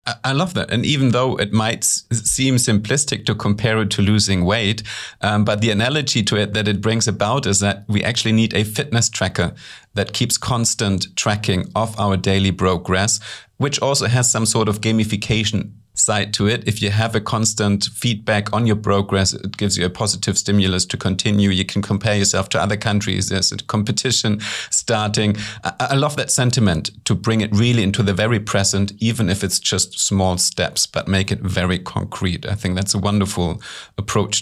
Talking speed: 190 wpm